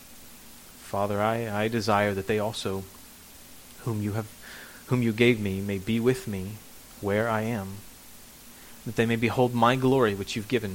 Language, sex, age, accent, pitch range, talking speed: English, male, 30-49, American, 100-115 Hz, 155 wpm